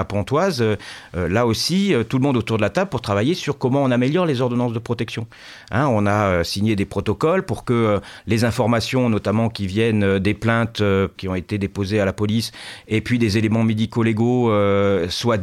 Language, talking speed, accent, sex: French, 220 wpm, French, male